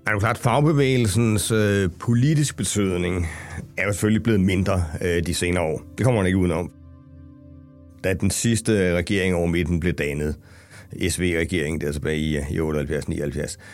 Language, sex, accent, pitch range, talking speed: Danish, male, native, 85-105 Hz, 155 wpm